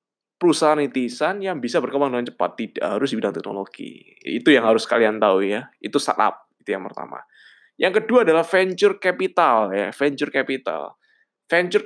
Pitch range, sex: 130-195 Hz, male